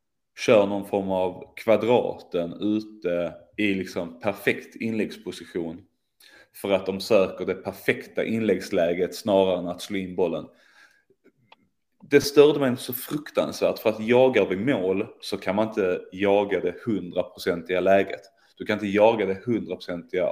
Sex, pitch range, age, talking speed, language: male, 95-125 Hz, 30-49, 140 wpm, Swedish